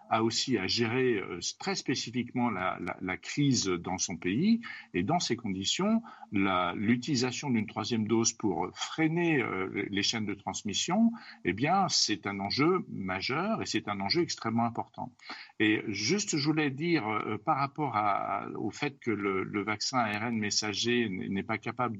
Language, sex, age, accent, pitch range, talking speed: French, male, 50-69, French, 115-155 Hz, 160 wpm